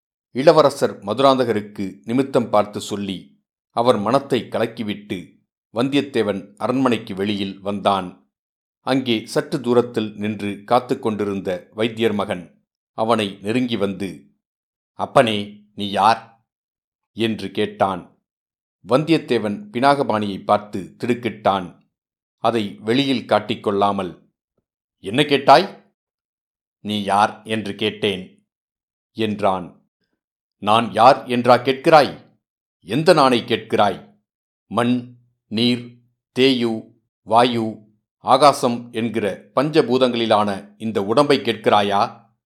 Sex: male